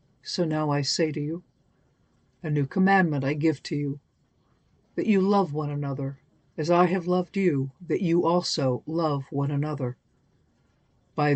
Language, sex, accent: English, female, American